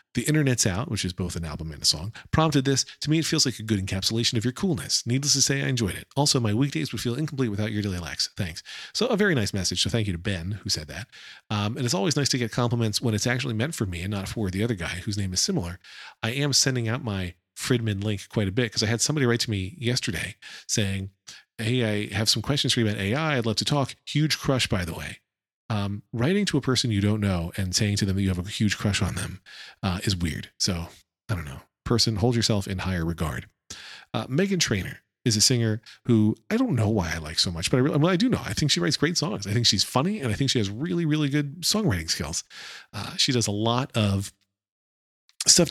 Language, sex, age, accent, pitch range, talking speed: English, male, 40-59, American, 95-130 Hz, 260 wpm